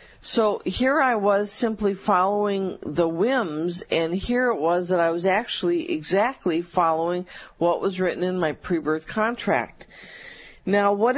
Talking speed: 145 wpm